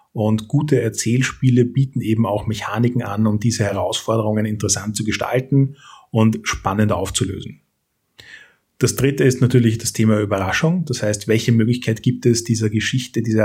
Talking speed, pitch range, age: 145 wpm, 105-125 Hz, 30-49